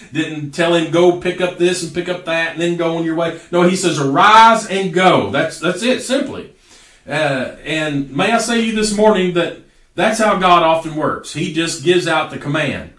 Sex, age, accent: male, 40-59, American